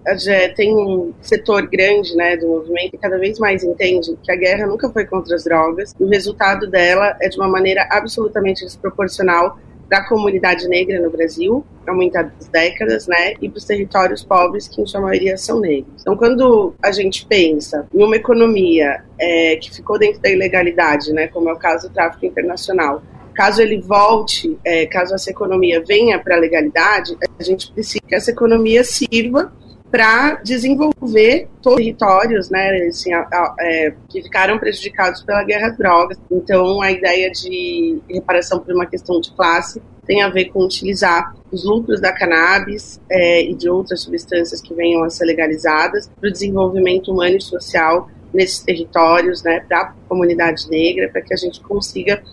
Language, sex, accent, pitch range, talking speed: Portuguese, female, Brazilian, 175-210 Hz, 175 wpm